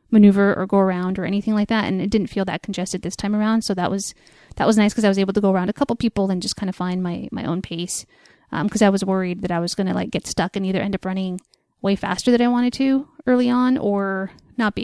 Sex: female